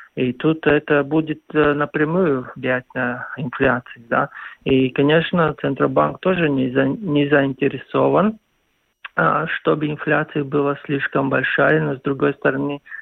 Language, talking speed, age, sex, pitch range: Russian, 110 wpm, 50-69, male, 130-155 Hz